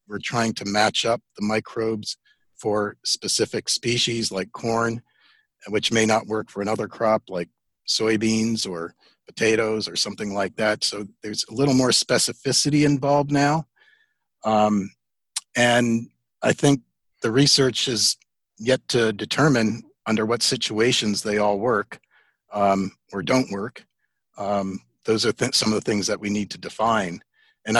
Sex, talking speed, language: male, 145 wpm, English